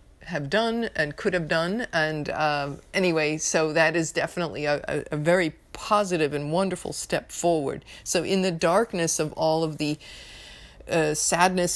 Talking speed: 165 wpm